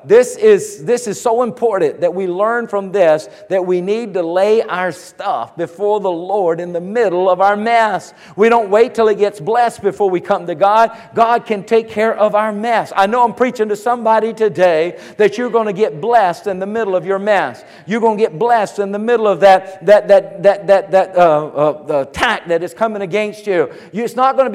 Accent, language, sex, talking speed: American, English, male, 225 wpm